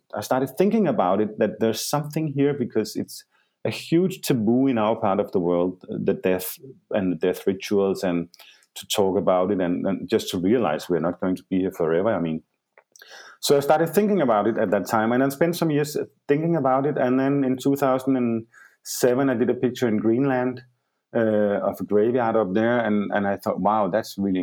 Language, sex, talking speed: English, male, 210 wpm